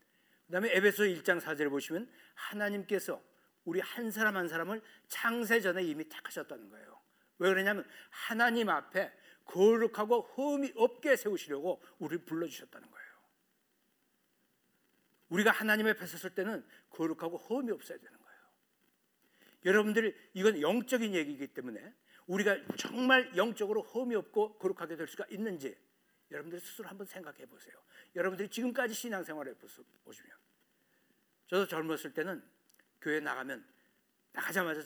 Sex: male